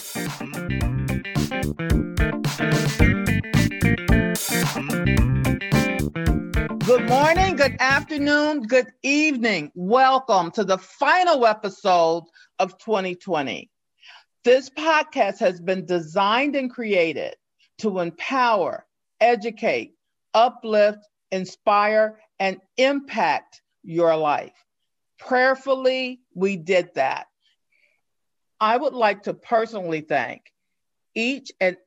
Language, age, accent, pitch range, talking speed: English, 50-69, American, 175-245 Hz, 75 wpm